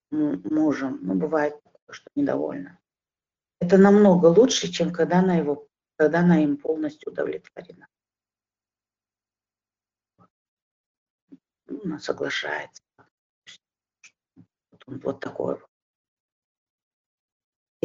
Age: 40-59